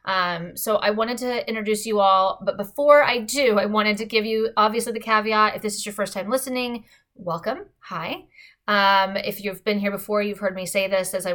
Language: English